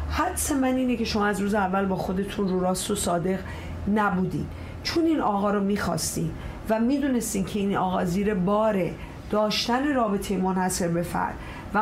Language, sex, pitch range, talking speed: Persian, female, 190-245 Hz, 160 wpm